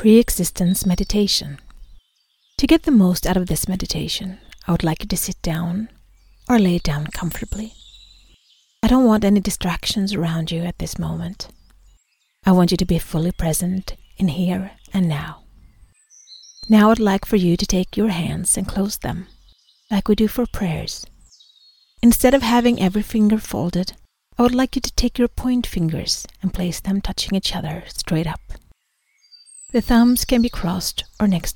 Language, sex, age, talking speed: English, female, 40-59, 170 wpm